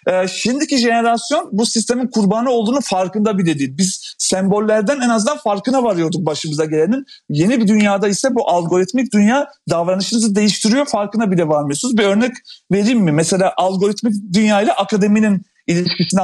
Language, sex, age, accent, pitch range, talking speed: Turkish, male, 40-59, native, 185-250 Hz, 150 wpm